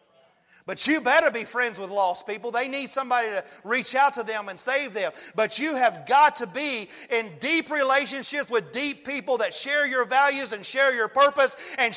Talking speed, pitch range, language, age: 200 wpm, 220-280 Hz, English, 40-59